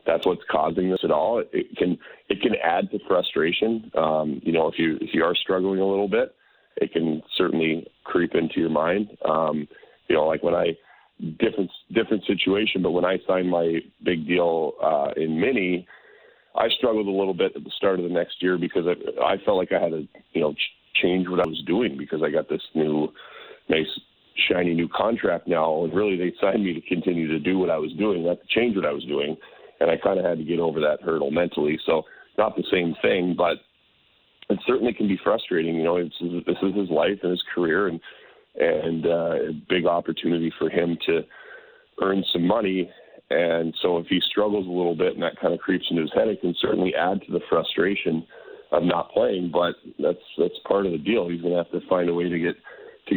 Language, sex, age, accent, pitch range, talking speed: English, male, 40-59, American, 85-95 Hz, 220 wpm